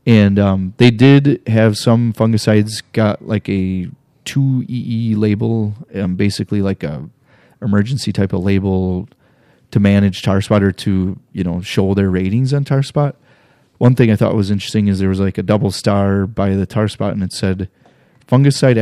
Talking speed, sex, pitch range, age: 180 wpm, male, 95-115 Hz, 30-49